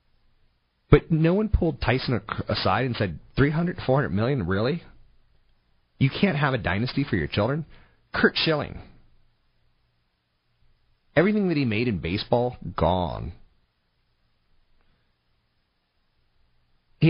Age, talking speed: 30-49, 110 wpm